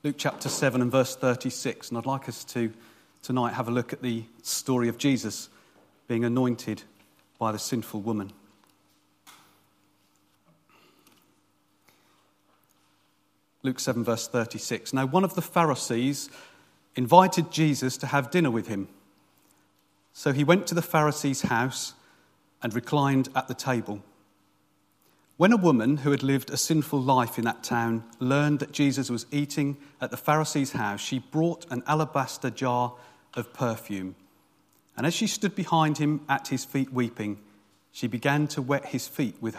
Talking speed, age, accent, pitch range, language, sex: 150 wpm, 40-59, British, 105-145 Hz, English, male